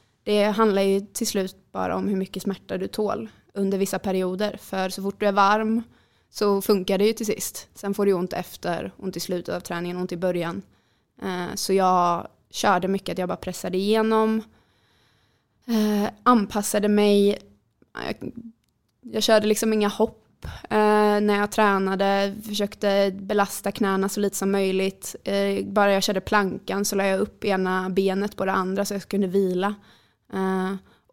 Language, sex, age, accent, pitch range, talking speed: Swedish, female, 20-39, native, 190-205 Hz, 160 wpm